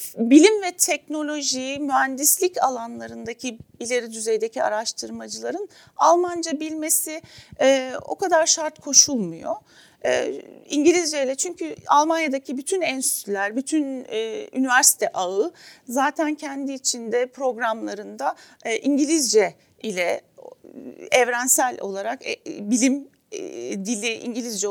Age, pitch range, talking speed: 40-59, 230-315 Hz, 95 wpm